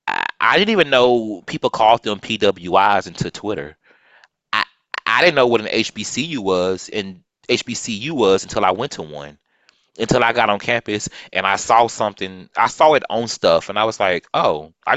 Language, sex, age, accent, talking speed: English, male, 30-49, American, 185 wpm